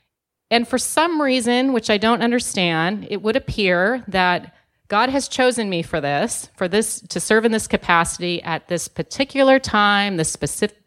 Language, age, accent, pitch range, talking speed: English, 30-49, American, 180-230 Hz, 170 wpm